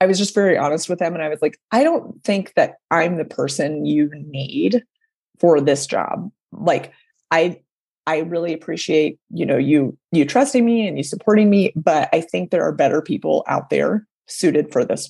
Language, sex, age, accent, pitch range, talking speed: English, female, 30-49, American, 155-230 Hz, 200 wpm